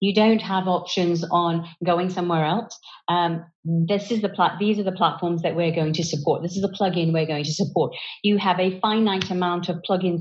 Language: English